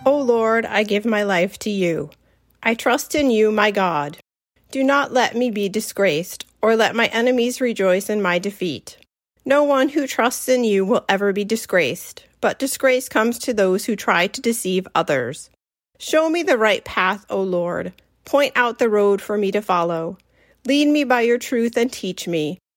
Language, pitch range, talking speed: English, 190-255 Hz, 185 wpm